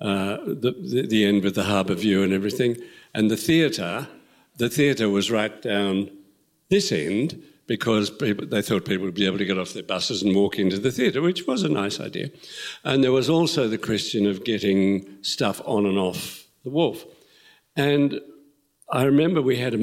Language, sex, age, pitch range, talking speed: English, male, 60-79, 100-130 Hz, 195 wpm